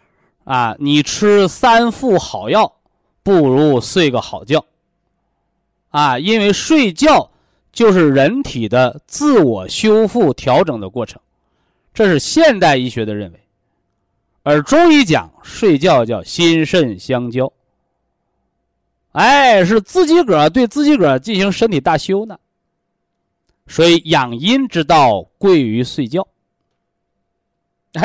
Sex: male